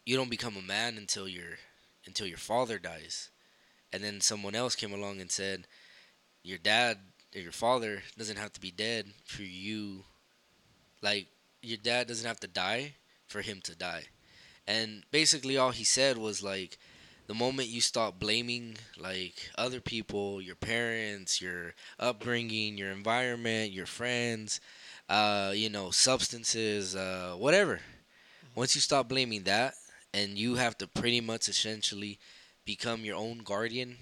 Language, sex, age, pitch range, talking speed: English, male, 20-39, 95-120 Hz, 155 wpm